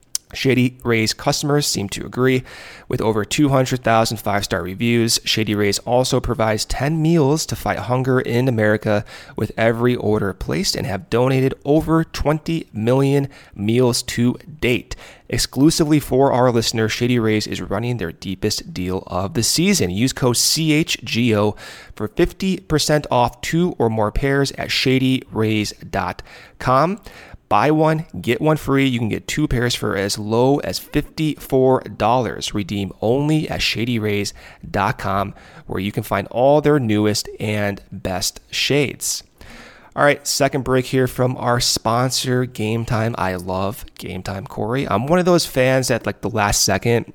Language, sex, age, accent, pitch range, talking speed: English, male, 30-49, American, 105-135 Hz, 145 wpm